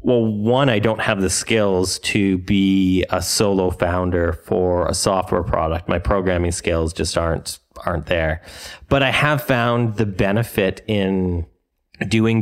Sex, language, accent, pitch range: male, English, American, 90-110 Hz